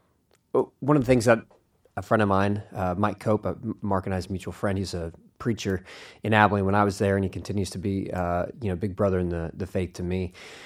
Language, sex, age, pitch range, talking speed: English, male, 30-49, 95-115 Hz, 260 wpm